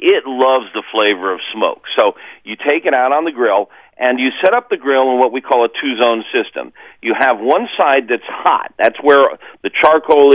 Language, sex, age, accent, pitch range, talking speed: English, male, 50-69, American, 120-155 Hz, 215 wpm